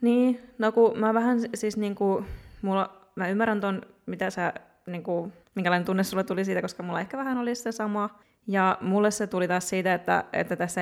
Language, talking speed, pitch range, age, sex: Finnish, 195 wpm, 170-195 Hz, 20-39, female